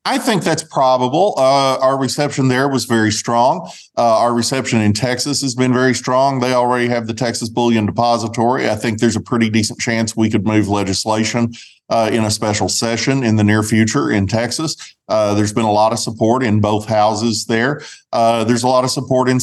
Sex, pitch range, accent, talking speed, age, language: male, 110-130 Hz, American, 205 wpm, 40-59, English